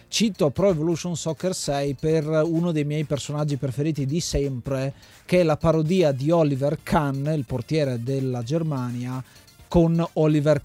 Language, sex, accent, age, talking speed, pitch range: Italian, male, native, 30-49, 145 wpm, 135-160 Hz